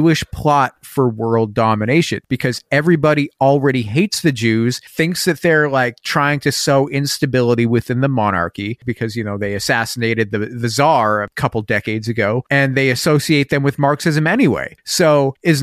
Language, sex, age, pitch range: English, male, 30-49, 120-150 Hz